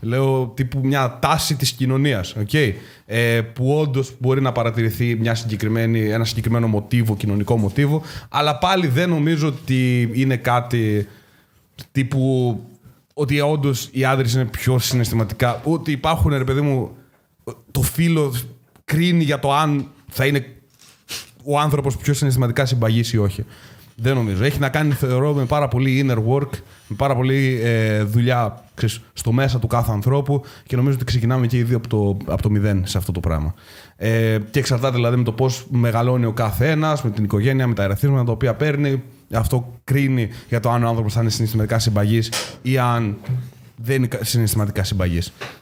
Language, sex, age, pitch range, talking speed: Greek, male, 30-49, 115-140 Hz, 155 wpm